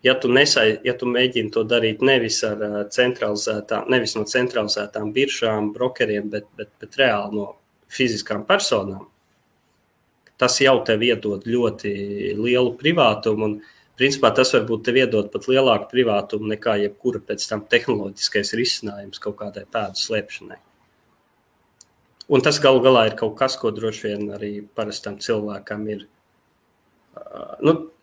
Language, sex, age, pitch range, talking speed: English, male, 20-39, 105-125 Hz, 135 wpm